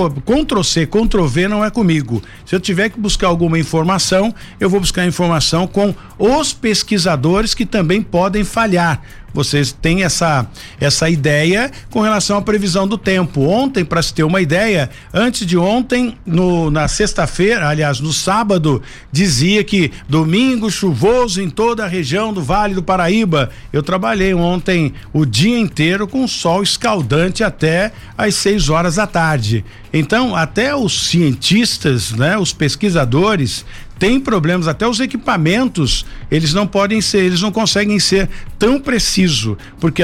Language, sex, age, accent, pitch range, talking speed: Portuguese, male, 50-69, Brazilian, 150-205 Hz, 145 wpm